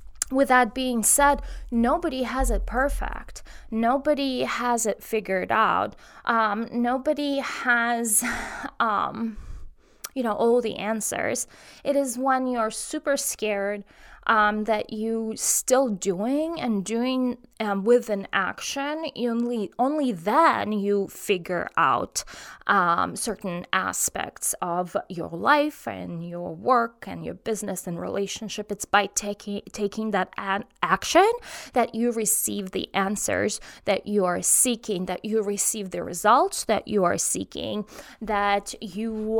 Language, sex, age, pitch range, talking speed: English, female, 20-39, 205-255 Hz, 130 wpm